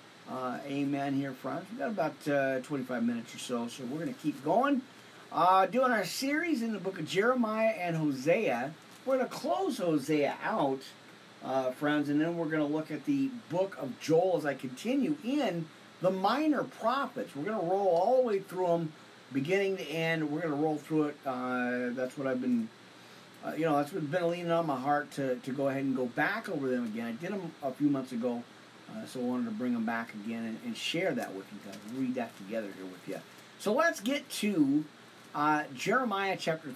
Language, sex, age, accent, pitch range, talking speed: English, male, 40-59, American, 130-205 Hz, 220 wpm